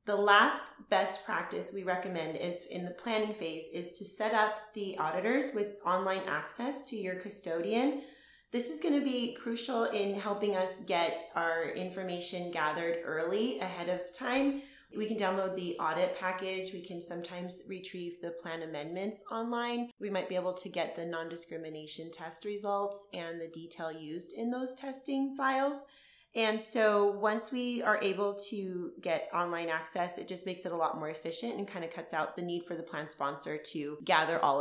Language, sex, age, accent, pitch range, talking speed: English, female, 30-49, American, 175-230 Hz, 180 wpm